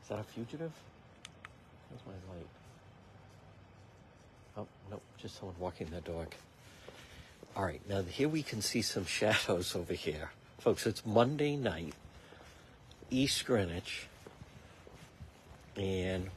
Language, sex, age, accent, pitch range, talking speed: English, male, 60-79, American, 95-130 Hz, 115 wpm